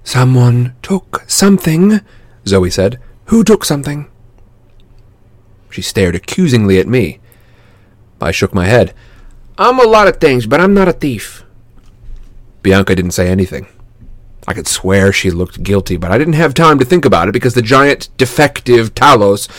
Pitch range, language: 95-125 Hz, English